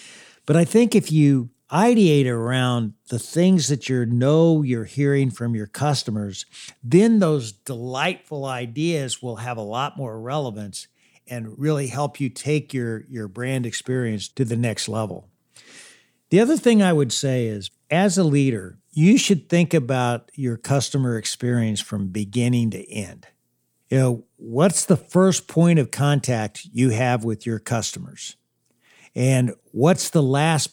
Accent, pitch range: American, 120-165 Hz